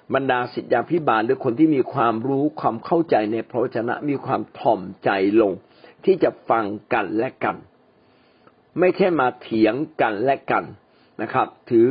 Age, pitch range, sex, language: 60-79, 120-185 Hz, male, Thai